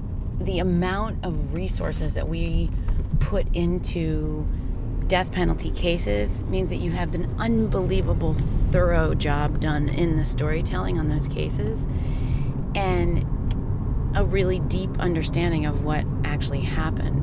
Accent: American